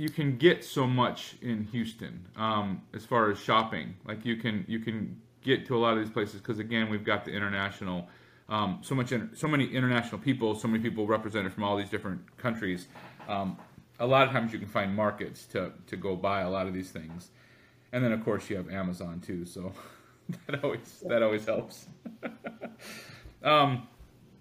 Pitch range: 110-140 Hz